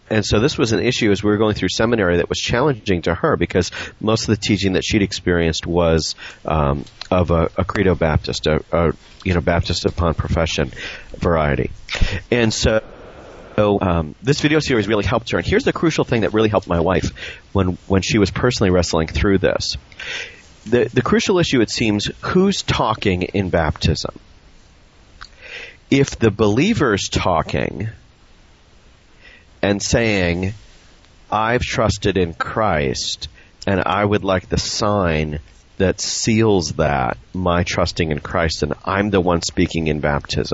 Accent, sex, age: American, male, 40-59